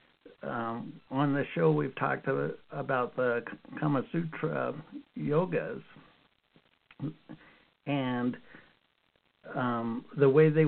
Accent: American